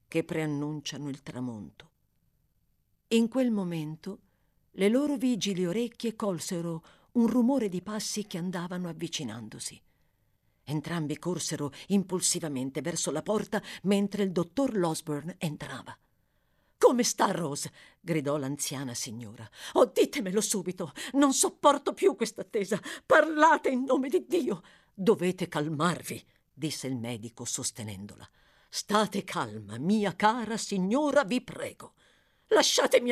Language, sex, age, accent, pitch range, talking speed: Italian, female, 50-69, native, 155-245 Hz, 115 wpm